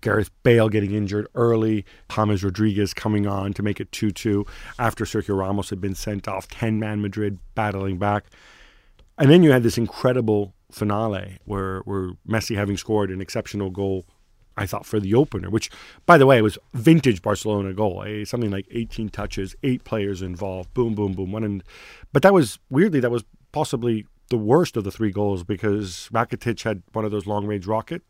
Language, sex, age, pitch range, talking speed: English, male, 40-59, 100-115 Hz, 185 wpm